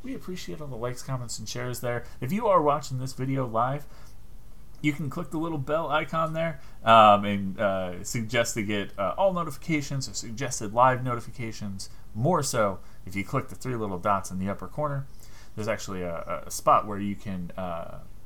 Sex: male